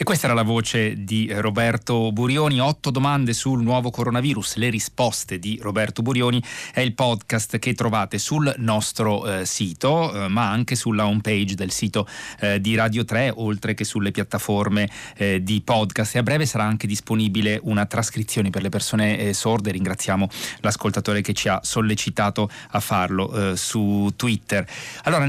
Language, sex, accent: Italian, male, native